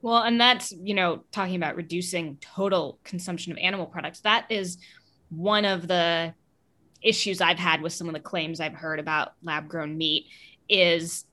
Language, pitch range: English, 180-245 Hz